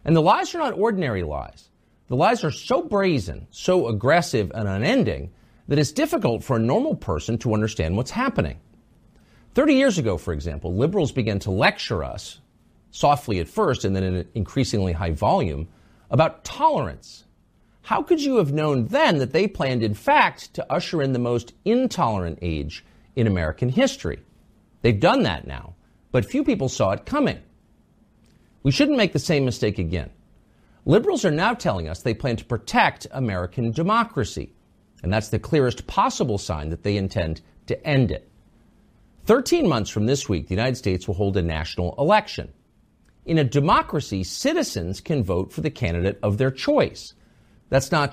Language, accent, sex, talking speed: English, American, male, 170 wpm